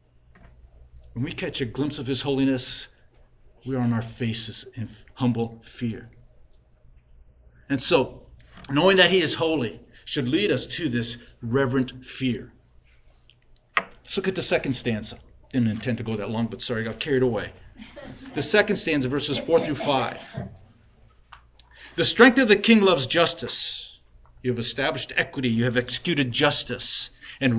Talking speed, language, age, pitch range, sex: 155 wpm, English, 50-69, 115-170 Hz, male